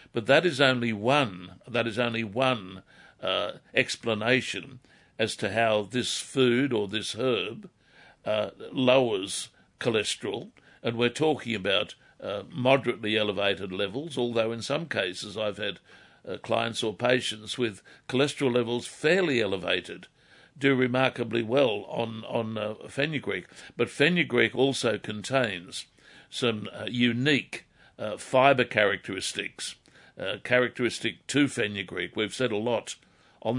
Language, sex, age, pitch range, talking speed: English, male, 60-79, 105-130 Hz, 125 wpm